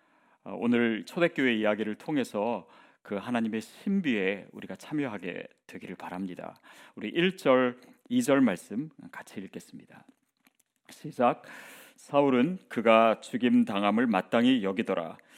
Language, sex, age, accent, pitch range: Korean, male, 30-49, native, 115-190 Hz